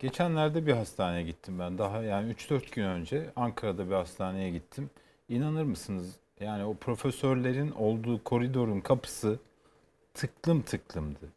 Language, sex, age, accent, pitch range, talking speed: Turkish, male, 40-59, native, 100-140 Hz, 125 wpm